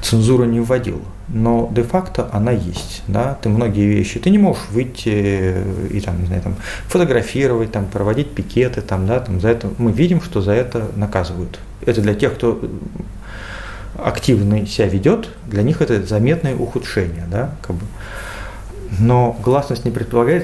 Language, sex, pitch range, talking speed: Russian, male, 100-120 Hz, 160 wpm